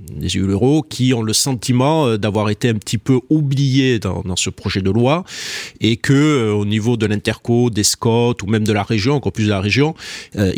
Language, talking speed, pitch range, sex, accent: French, 215 wpm, 105-130 Hz, male, French